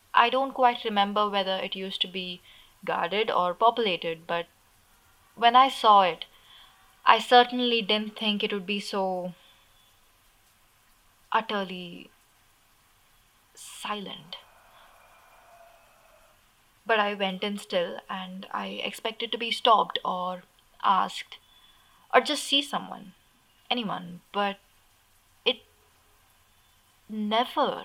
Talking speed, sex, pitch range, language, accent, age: 105 wpm, female, 175-215 Hz, English, Indian, 20-39